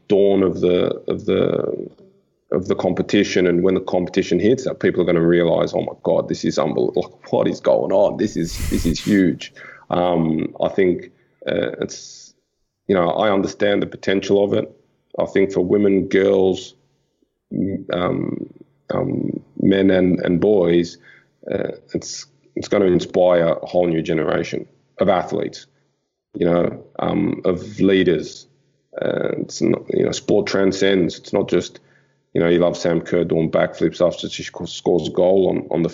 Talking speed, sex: 170 wpm, male